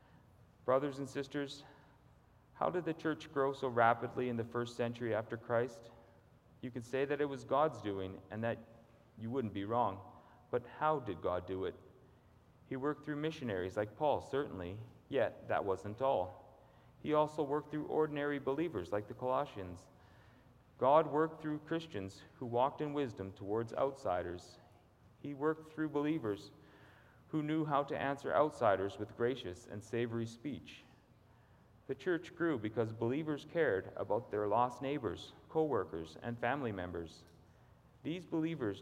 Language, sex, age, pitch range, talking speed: English, male, 40-59, 110-145 Hz, 150 wpm